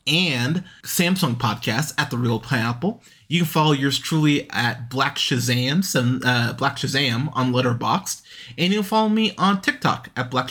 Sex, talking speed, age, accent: male, 165 wpm, 20-39, American